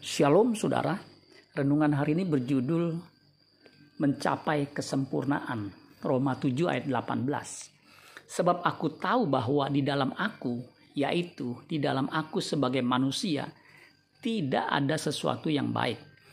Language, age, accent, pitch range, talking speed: Indonesian, 50-69, native, 135-160 Hz, 110 wpm